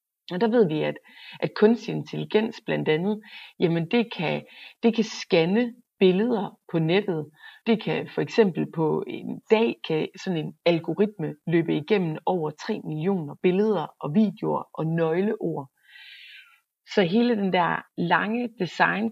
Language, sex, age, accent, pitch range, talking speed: Danish, female, 30-49, native, 165-225 Hz, 145 wpm